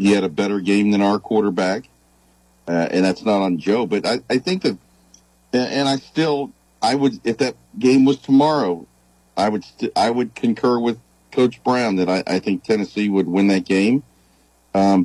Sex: male